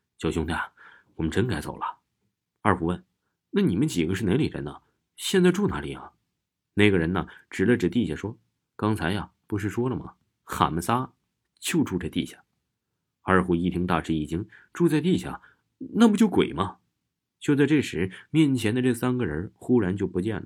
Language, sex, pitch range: Chinese, male, 85-125 Hz